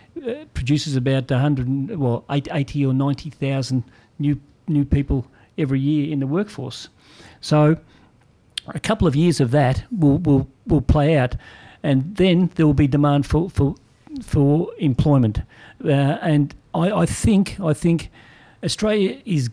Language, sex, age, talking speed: English, male, 50-69, 145 wpm